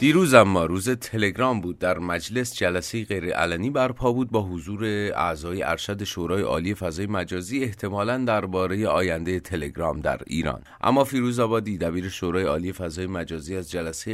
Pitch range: 90-115 Hz